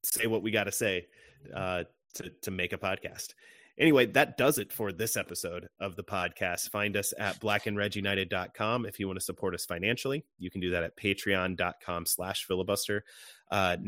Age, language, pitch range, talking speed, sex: 30-49, English, 95-110 Hz, 175 wpm, male